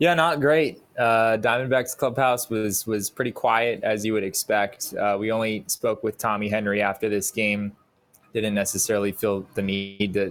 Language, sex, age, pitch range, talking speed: English, male, 20-39, 105-125 Hz, 175 wpm